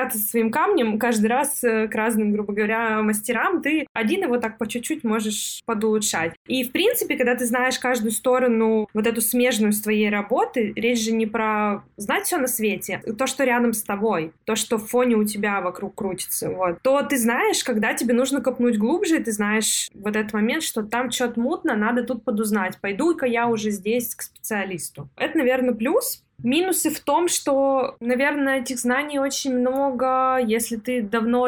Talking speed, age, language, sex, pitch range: 175 wpm, 20-39, Russian, female, 215-255 Hz